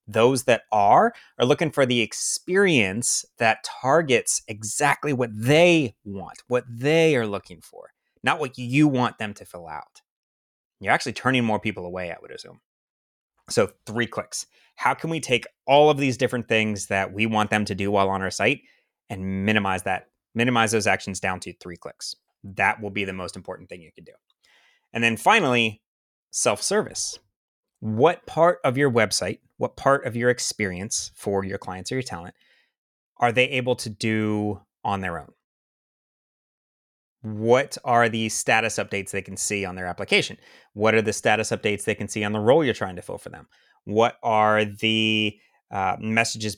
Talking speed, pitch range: 180 wpm, 100-120 Hz